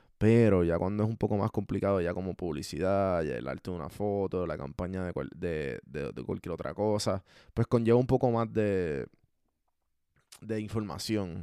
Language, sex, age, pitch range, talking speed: Spanish, male, 20-39, 100-120 Hz, 185 wpm